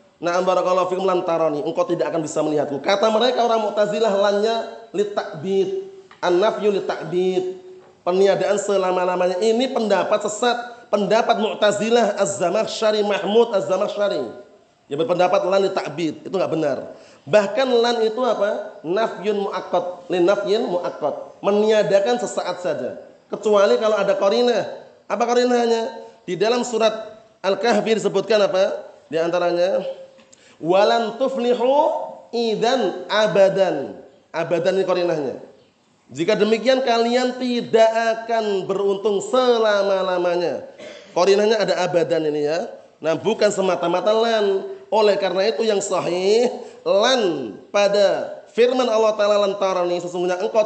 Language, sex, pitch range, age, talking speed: Indonesian, male, 185-230 Hz, 30-49, 110 wpm